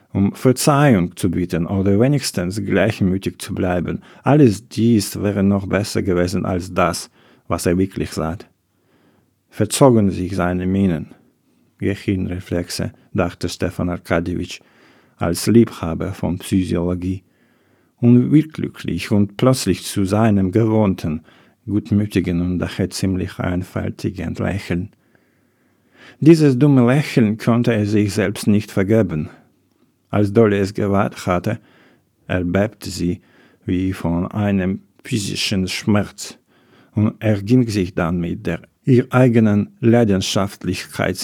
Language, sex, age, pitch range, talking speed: English, male, 50-69, 90-115 Hz, 110 wpm